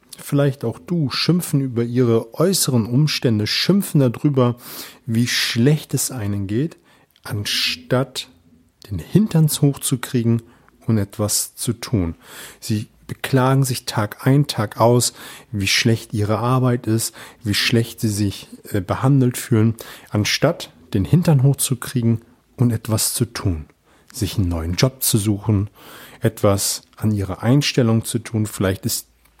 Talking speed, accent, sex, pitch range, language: 130 wpm, German, male, 105-135 Hz, German